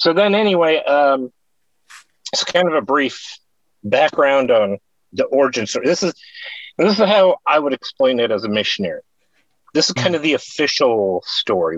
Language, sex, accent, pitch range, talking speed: English, male, American, 135-205 Hz, 170 wpm